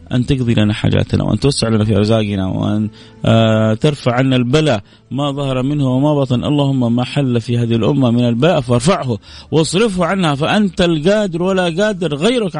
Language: English